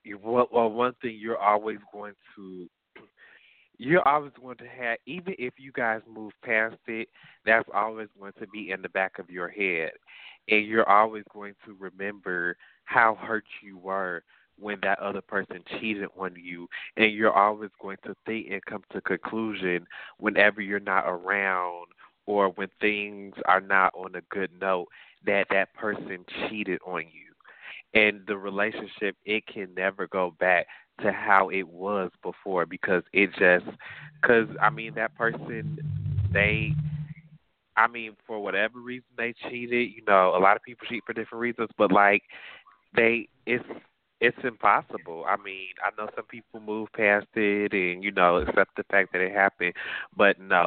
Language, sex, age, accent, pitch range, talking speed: English, male, 30-49, American, 95-115 Hz, 170 wpm